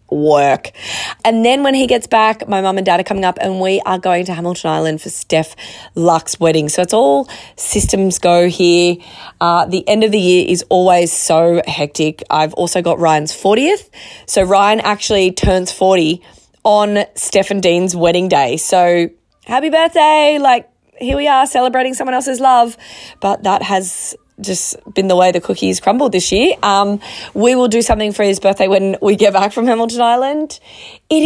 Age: 20-39